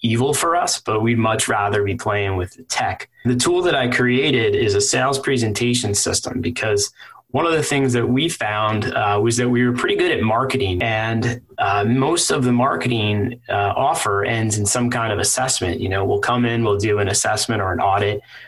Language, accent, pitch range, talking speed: English, American, 100-120 Hz, 210 wpm